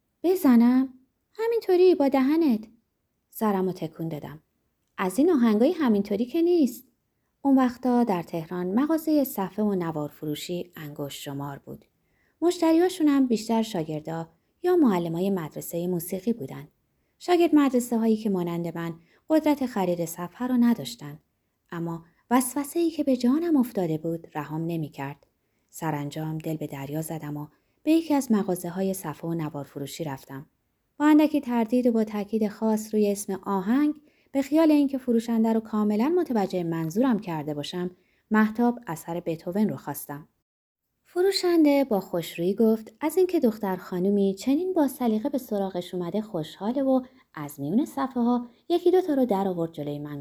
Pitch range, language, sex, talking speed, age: 165-270 Hz, Persian, female, 145 wpm, 20-39